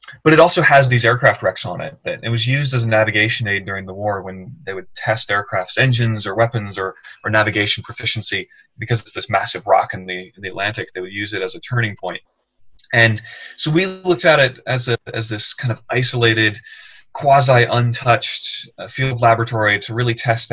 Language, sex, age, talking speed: English, male, 20-39, 200 wpm